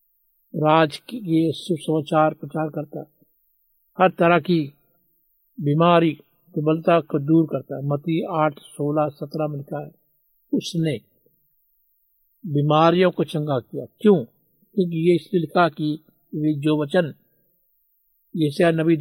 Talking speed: 100 wpm